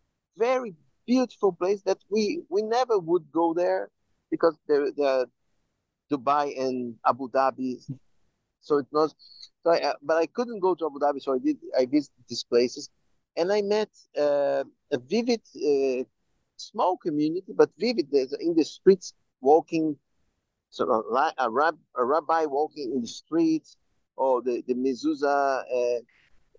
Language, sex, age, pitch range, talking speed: English, male, 50-69, 140-235 Hz, 155 wpm